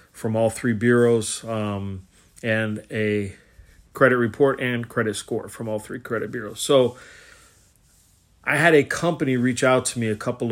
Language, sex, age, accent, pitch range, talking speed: English, male, 30-49, American, 110-125 Hz, 160 wpm